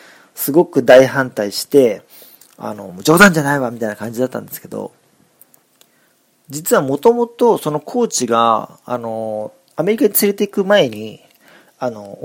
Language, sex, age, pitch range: Japanese, male, 40-59, 115-155 Hz